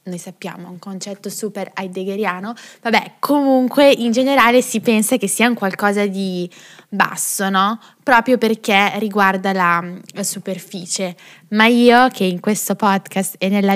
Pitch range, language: 190-230 Hz, Italian